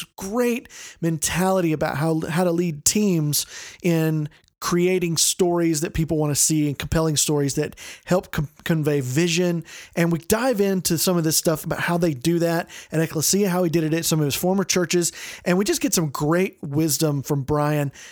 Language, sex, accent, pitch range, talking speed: English, male, American, 155-185 Hz, 190 wpm